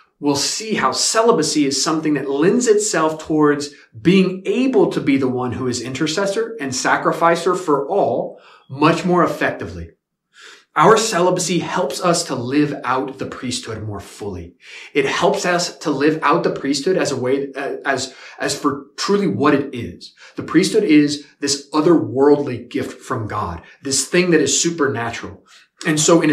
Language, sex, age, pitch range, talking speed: English, male, 30-49, 130-175 Hz, 160 wpm